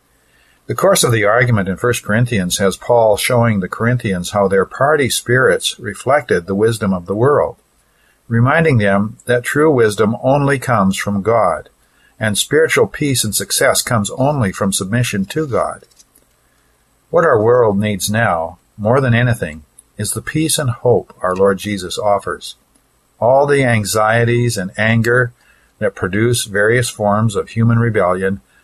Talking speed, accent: 150 wpm, American